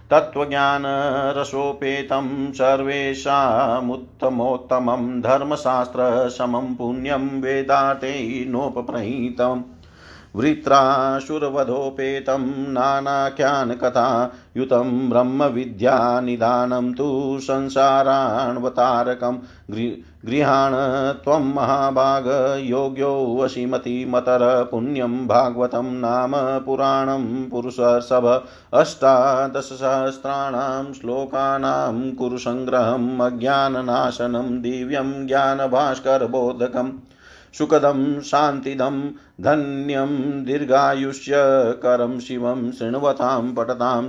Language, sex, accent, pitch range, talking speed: Hindi, male, native, 125-135 Hz, 50 wpm